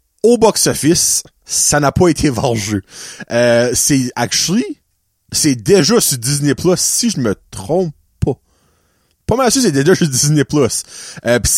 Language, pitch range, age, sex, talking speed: French, 110-155 Hz, 30-49, male, 155 wpm